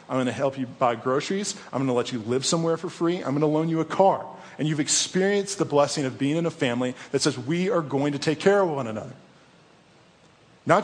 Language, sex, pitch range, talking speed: English, male, 135-165 Hz, 250 wpm